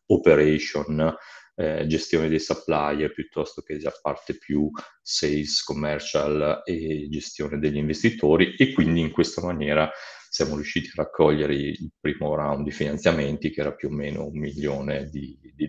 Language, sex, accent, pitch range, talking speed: Italian, male, native, 75-85 Hz, 150 wpm